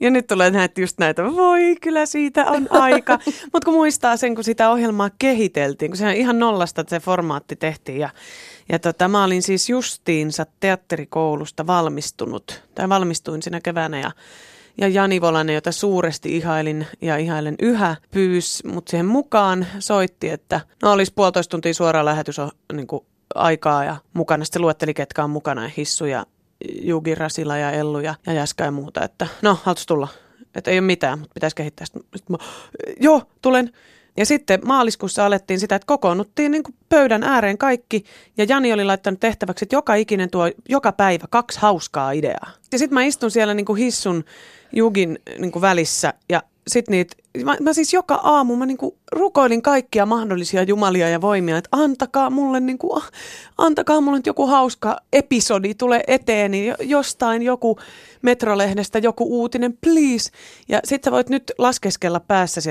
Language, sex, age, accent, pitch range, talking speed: Finnish, female, 30-49, native, 165-250 Hz, 160 wpm